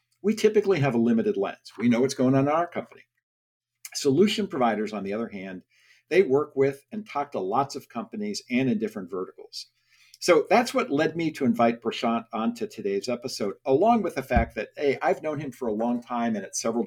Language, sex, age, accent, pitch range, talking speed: English, male, 50-69, American, 120-195 Hz, 215 wpm